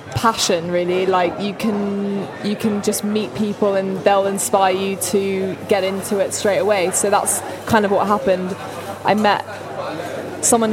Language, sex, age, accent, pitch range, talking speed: English, female, 20-39, British, 185-205 Hz, 160 wpm